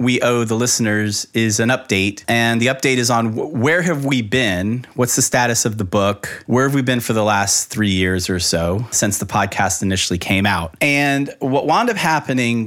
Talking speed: 210 wpm